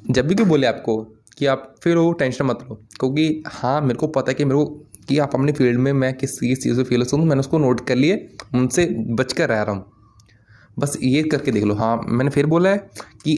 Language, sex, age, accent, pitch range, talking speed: Hindi, male, 20-39, native, 125-180 Hz, 240 wpm